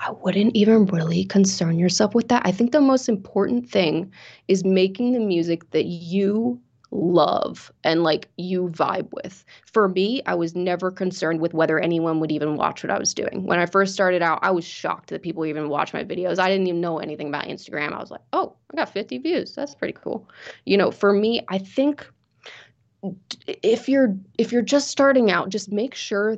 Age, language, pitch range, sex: 20-39, English, 160-210 Hz, female